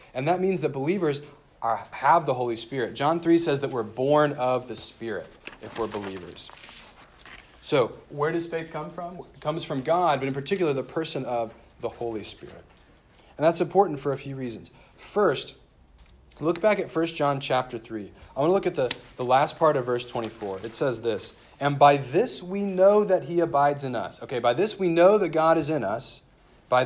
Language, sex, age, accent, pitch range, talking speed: English, male, 40-59, American, 125-165 Hz, 205 wpm